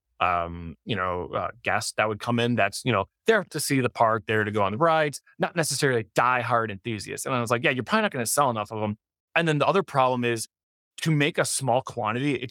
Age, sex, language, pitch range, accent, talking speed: 30-49, male, English, 110-150 Hz, American, 255 wpm